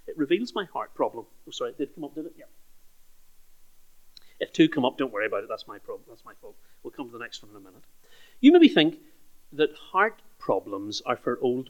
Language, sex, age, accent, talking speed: English, male, 40-59, British, 235 wpm